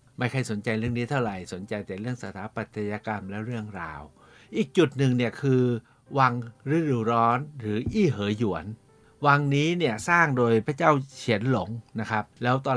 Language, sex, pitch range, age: Thai, male, 110-145 Hz, 60-79